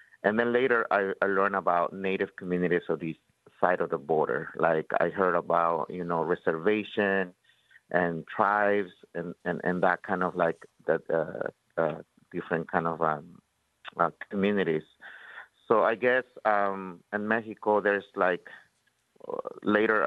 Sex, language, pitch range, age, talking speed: male, English, 90-105 Hz, 50-69, 145 wpm